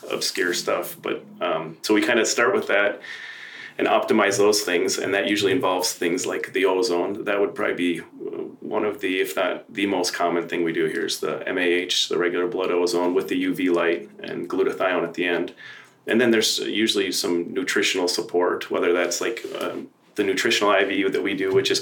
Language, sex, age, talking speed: English, male, 30-49, 205 wpm